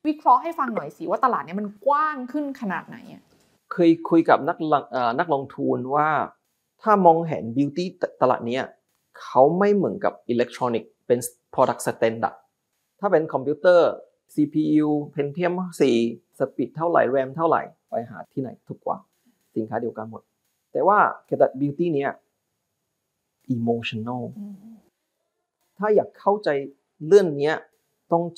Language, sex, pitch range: Thai, male, 130-195 Hz